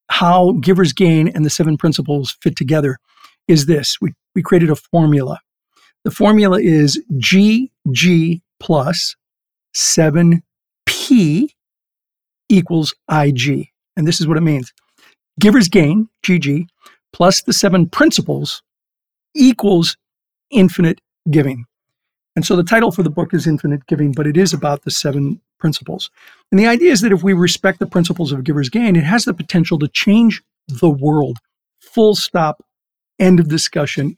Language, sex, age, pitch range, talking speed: English, male, 50-69, 155-195 Hz, 145 wpm